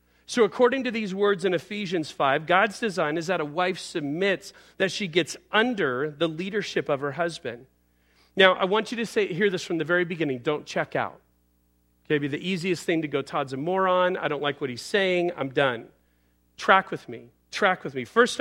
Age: 40-59